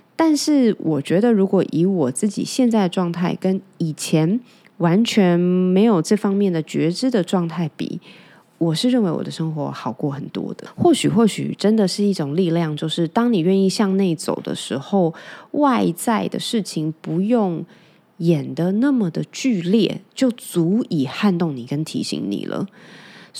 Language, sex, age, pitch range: Chinese, female, 20-39, 160-210 Hz